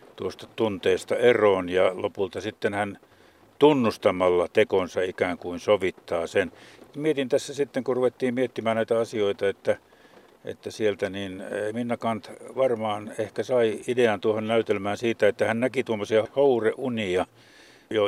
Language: Finnish